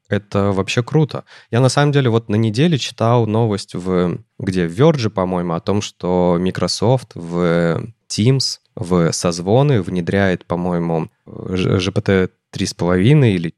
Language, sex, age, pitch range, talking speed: Russian, male, 20-39, 95-115 Hz, 125 wpm